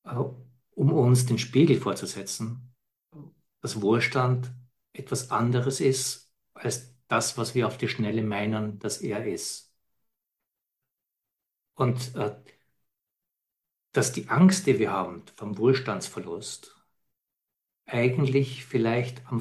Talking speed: 105 wpm